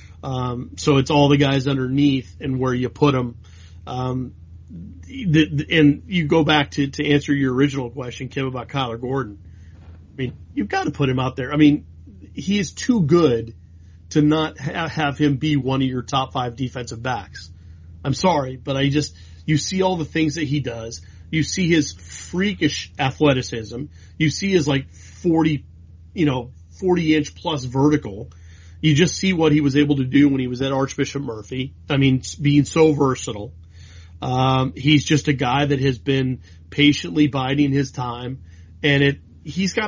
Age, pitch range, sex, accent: 30-49, 115-150 Hz, male, American